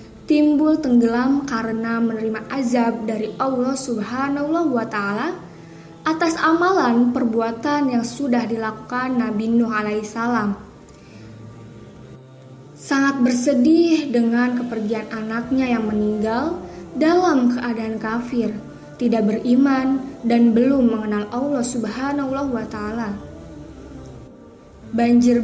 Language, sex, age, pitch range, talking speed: Indonesian, female, 20-39, 225-270 Hz, 95 wpm